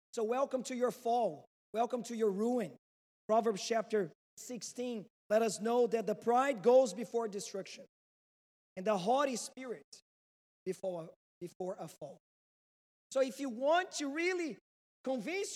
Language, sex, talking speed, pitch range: English, male, 135 wpm, 200-260 Hz